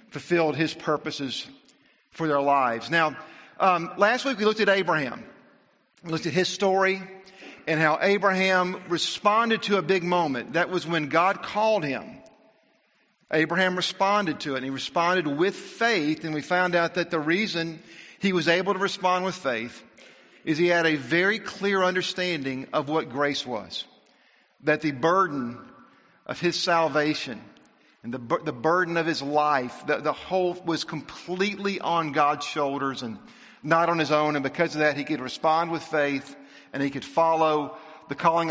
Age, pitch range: 50-69, 145-185 Hz